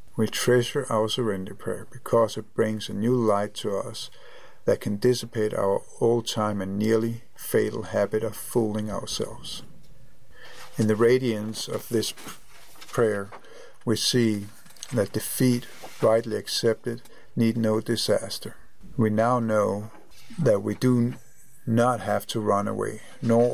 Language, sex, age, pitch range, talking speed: English, male, 50-69, 105-120 Hz, 135 wpm